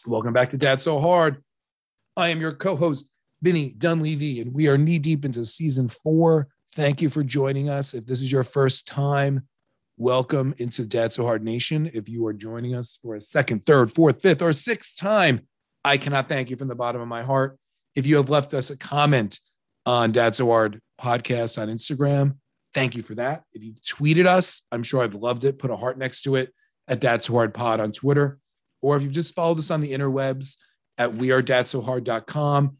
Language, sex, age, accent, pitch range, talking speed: English, male, 40-59, American, 120-145 Hz, 205 wpm